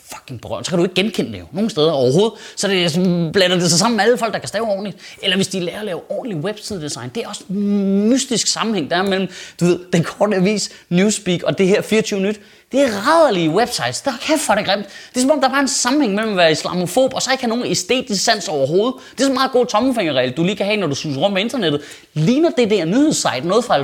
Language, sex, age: Danish, male, 20-39